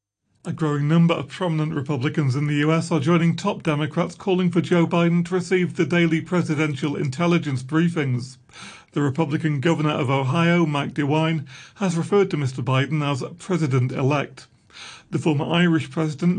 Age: 40-59